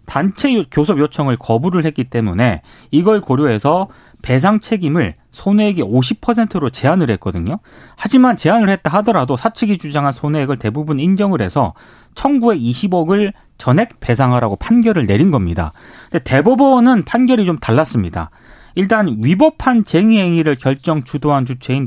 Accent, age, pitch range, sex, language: native, 30-49, 130-215 Hz, male, Korean